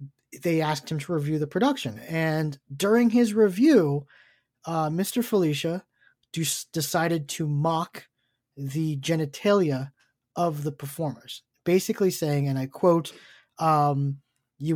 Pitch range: 145-190 Hz